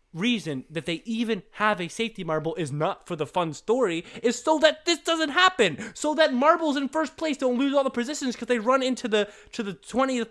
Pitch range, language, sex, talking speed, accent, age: 200-295 Hz, English, male, 225 wpm, American, 20-39